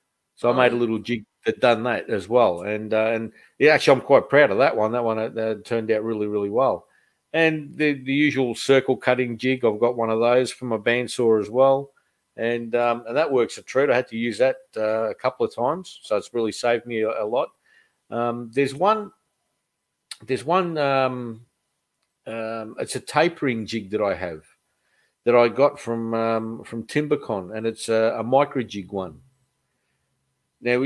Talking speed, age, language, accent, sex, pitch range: 195 wpm, 50-69, English, Australian, male, 115-145 Hz